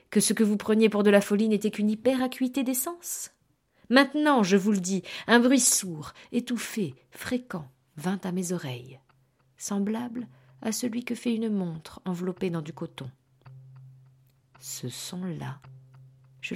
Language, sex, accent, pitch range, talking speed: French, female, French, 130-200 Hz, 150 wpm